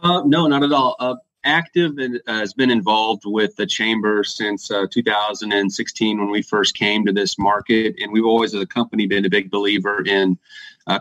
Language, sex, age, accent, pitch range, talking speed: English, male, 30-49, American, 100-115 Hz, 190 wpm